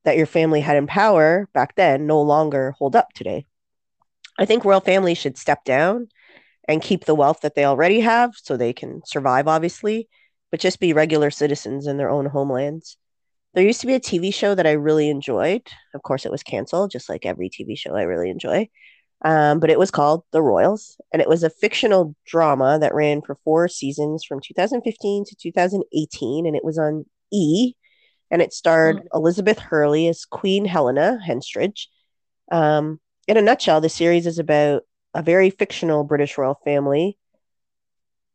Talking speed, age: 180 wpm, 20-39